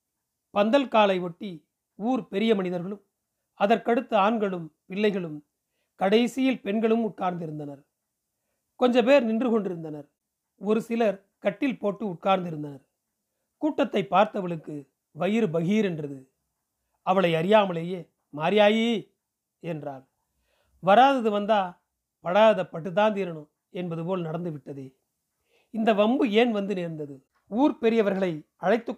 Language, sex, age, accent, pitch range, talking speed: Tamil, male, 40-59, native, 165-215 Hz, 95 wpm